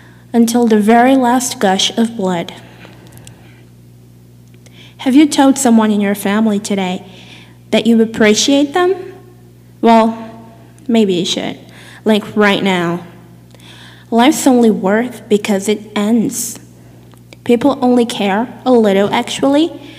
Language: English